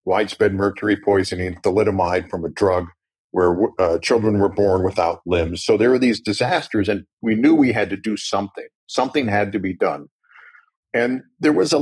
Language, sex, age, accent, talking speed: English, male, 50-69, American, 185 wpm